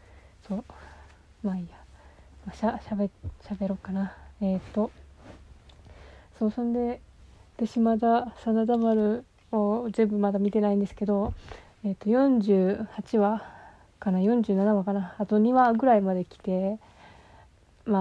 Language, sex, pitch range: Japanese, female, 185-210 Hz